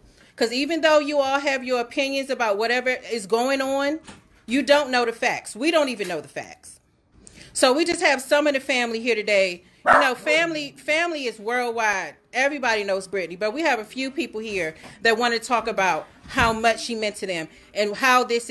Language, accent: English, American